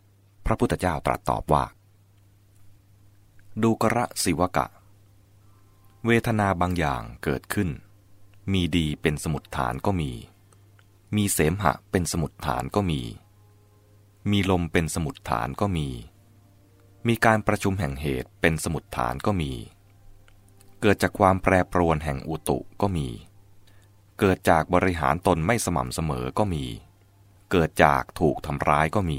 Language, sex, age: English, male, 20-39